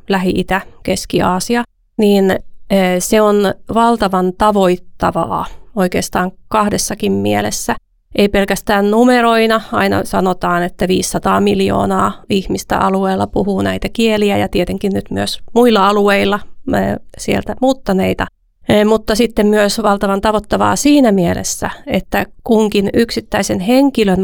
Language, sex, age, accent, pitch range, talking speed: Finnish, female, 30-49, native, 185-215 Hz, 100 wpm